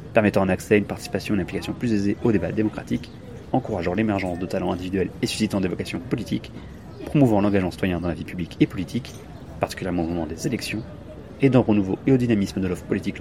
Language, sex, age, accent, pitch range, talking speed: French, male, 30-49, French, 95-115 Hz, 210 wpm